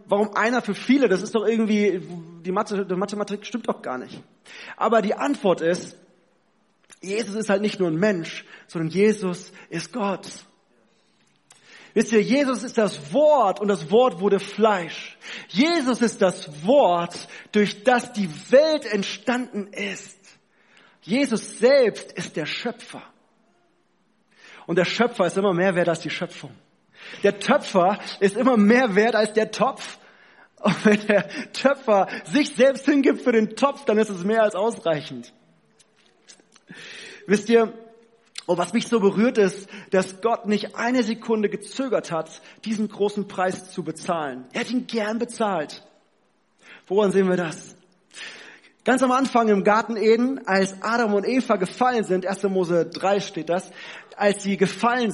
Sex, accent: male, German